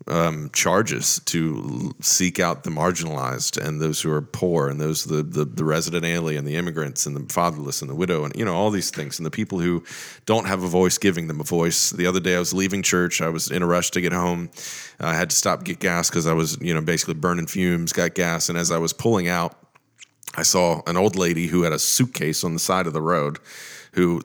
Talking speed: 245 wpm